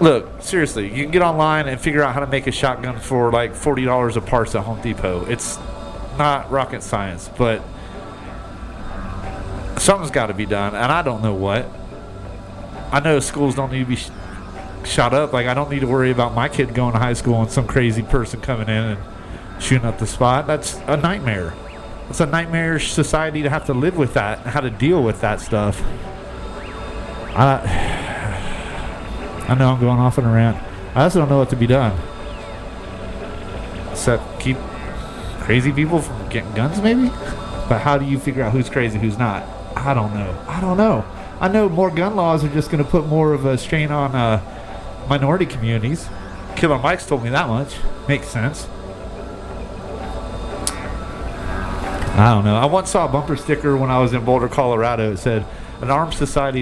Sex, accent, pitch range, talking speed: male, American, 100-140 Hz, 190 wpm